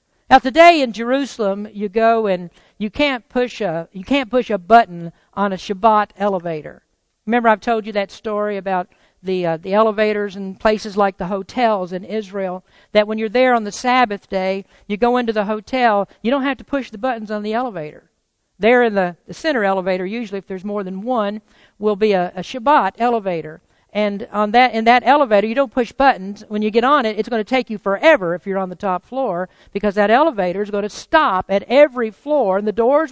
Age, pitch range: 50-69, 200-260 Hz